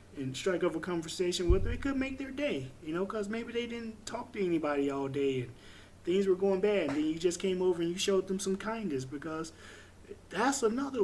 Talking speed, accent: 235 wpm, American